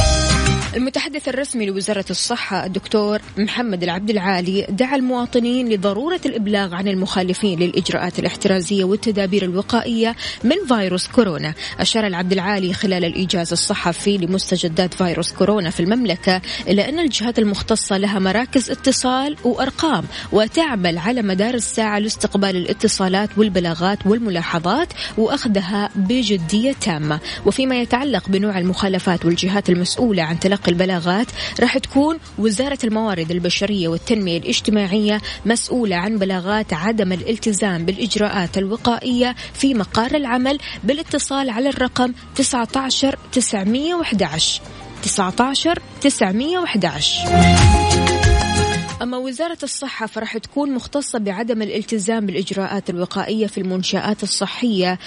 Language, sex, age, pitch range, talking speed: Arabic, female, 20-39, 185-240 Hz, 100 wpm